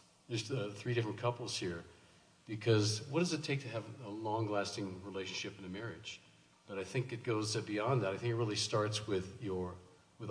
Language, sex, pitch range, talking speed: English, male, 95-115 Hz, 200 wpm